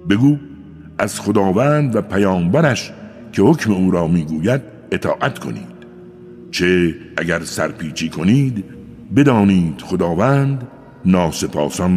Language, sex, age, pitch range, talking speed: Persian, male, 60-79, 85-115 Hz, 95 wpm